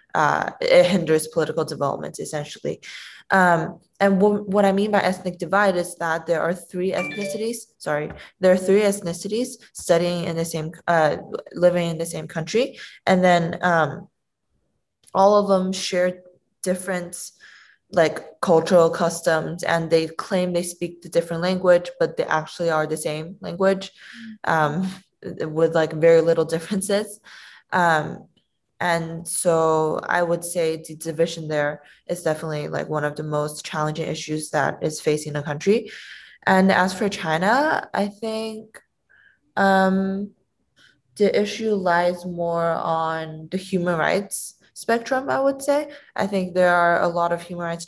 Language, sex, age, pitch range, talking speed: English, female, 20-39, 165-195 Hz, 150 wpm